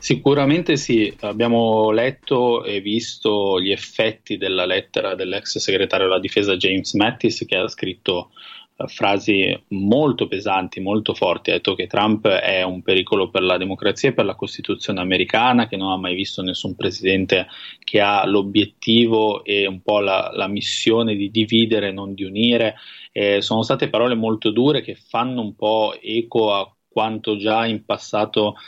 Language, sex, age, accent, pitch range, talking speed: Italian, male, 20-39, native, 95-115 Hz, 160 wpm